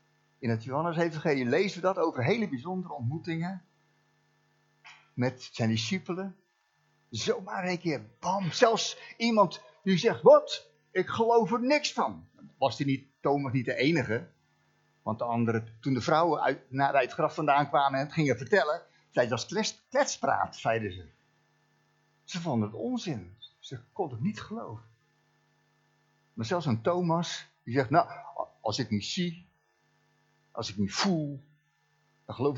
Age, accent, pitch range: 50-69, Dutch, 100-165 Hz